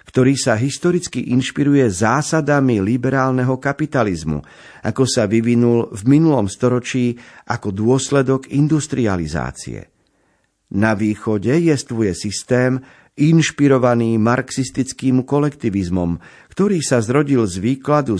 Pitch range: 110-135 Hz